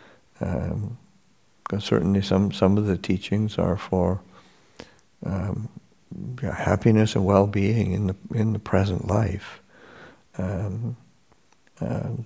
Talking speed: 105 wpm